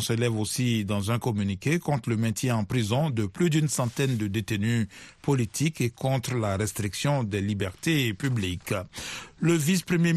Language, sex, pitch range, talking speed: French, male, 115-145 Hz, 155 wpm